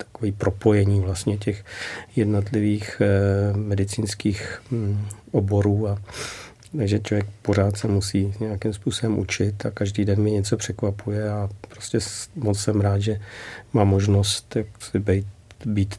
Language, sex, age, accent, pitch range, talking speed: Czech, male, 40-59, native, 100-110 Hz, 130 wpm